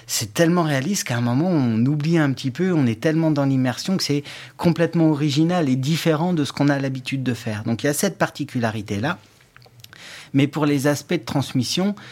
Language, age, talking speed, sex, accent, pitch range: French, 40-59, 205 wpm, male, French, 120-150 Hz